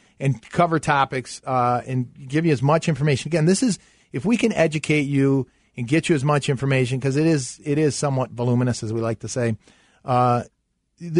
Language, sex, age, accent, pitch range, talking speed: English, male, 40-59, American, 125-145 Hz, 200 wpm